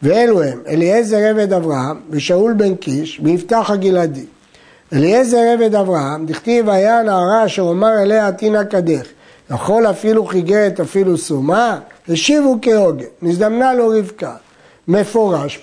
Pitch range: 170-220 Hz